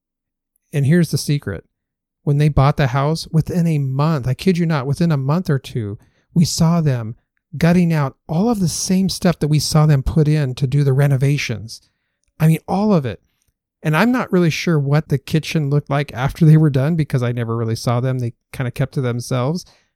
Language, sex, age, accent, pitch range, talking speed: English, male, 50-69, American, 130-165 Hz, 215 wpm